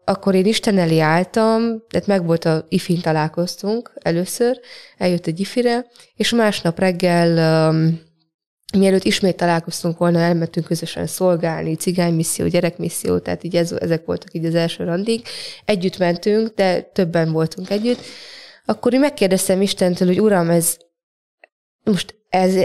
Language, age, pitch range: Hungarian, 20-39, 170-210 Hz